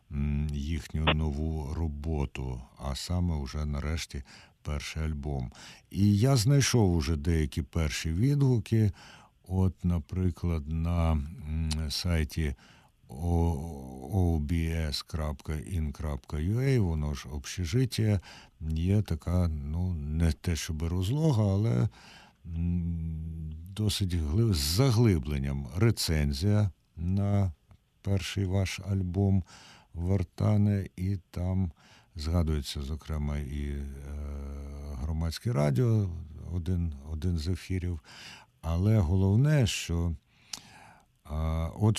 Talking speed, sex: 90 wpm, male